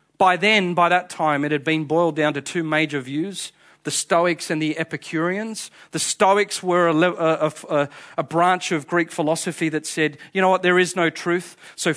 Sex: male